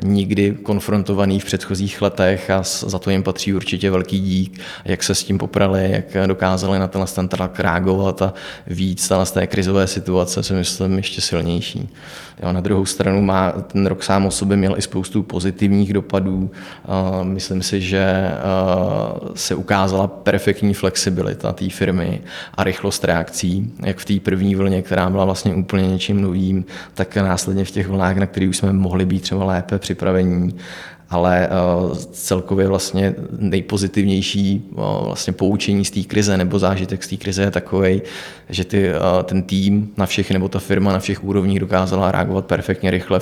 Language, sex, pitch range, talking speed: Czech, male, 95-100 Hz, 165 wpm